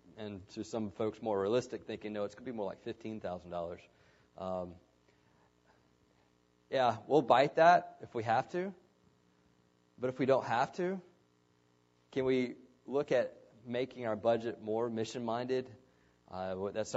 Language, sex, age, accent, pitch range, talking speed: English, male, 30-49, American, 90-115 Hz, 140 wpm